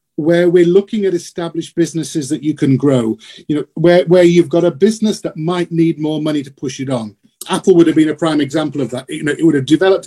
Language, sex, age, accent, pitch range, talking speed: Hebrew, male, 40-59, British, 145-185 Hz, 260 wpm